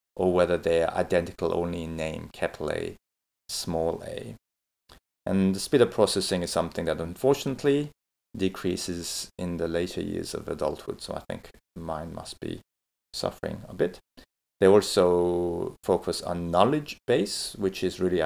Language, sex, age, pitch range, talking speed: English, male, 30-49, 80-95 Hz, 150 wpm